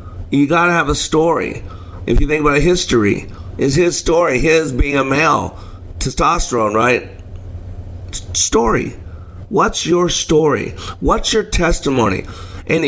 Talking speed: 135 wpm